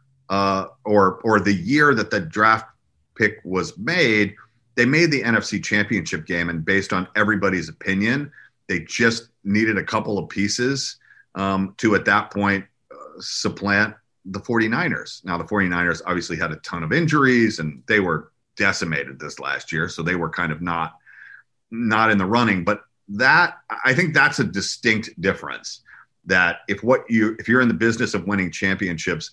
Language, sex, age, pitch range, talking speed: English, male, 40-59, 90-120 Hz, 170 wpm